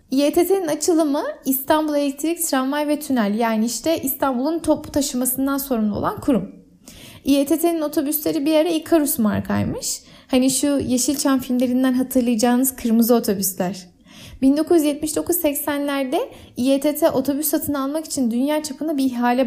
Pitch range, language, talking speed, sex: 245-315 Hz, Turkish, 115 wpm, female